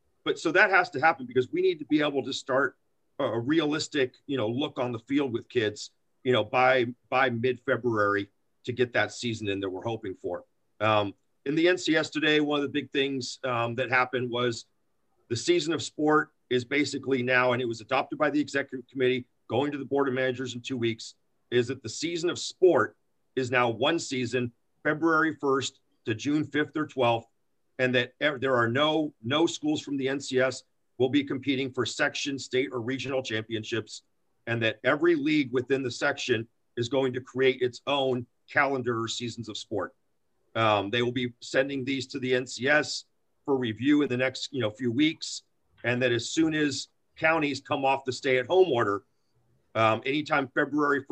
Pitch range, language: 120-145 Hz, English